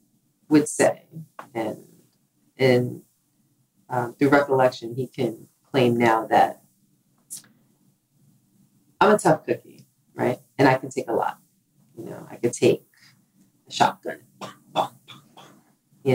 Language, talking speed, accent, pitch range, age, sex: English, 115 wpm, American, 135-185 Hz, 40-59, female